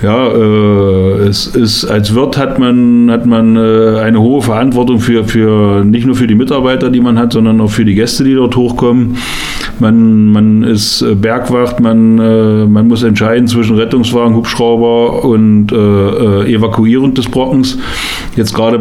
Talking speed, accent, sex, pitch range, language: 160 wpm, German, male, 105-120 Hz, German